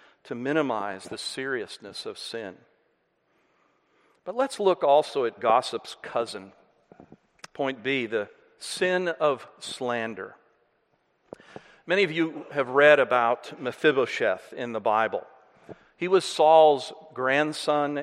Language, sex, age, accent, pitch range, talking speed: English, male, 50-69, American, 135-180 Hz, 110 wpm